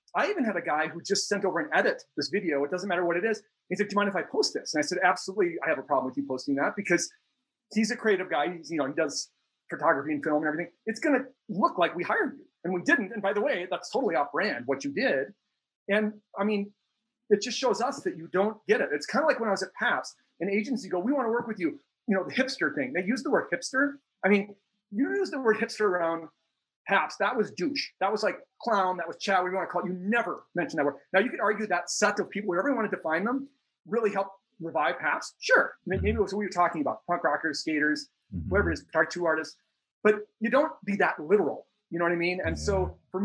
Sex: male